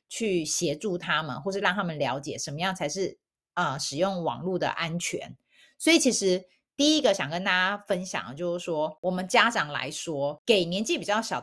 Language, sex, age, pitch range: Chinese, female, 30-49, 160-200 Hz